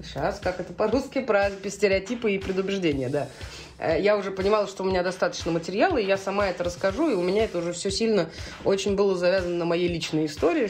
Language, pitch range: Russian, 160-215 Hz